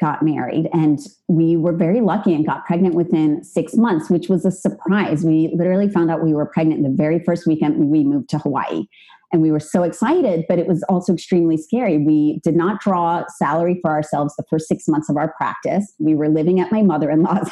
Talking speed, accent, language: 225 wpm, American, English